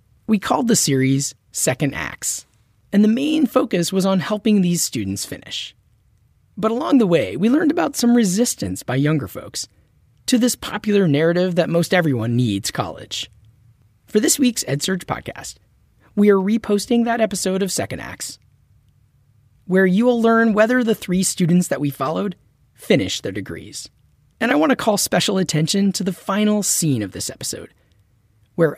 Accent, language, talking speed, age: American, English, 165 wpm, 30-49